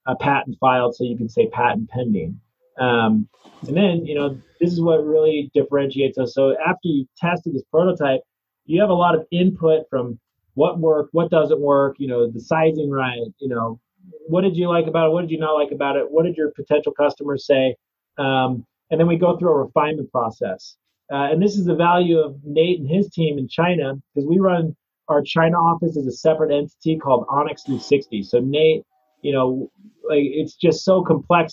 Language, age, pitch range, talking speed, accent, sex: English, 30-49, 135-165 Hz, 205 wpm, American, male